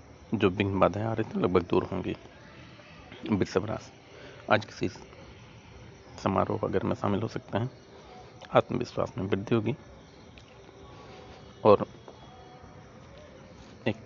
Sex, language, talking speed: male, Hindi, 105 wpm